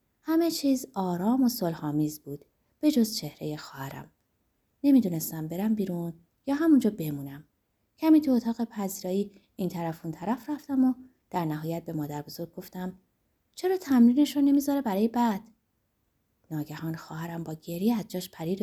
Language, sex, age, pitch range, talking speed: Persian, female, 30-49, 155-250 Hz, 135 wpm